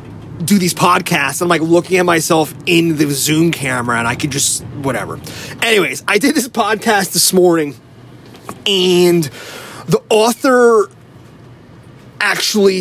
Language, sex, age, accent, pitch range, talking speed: English, male, 30-49, American, 130-185 Hz, 130 wpm